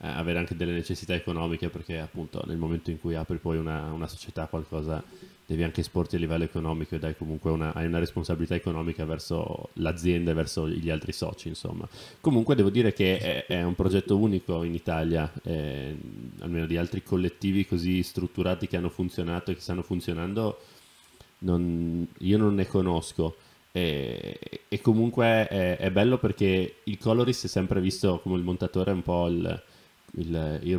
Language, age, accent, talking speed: Italian, 20-39, native, 175 wpm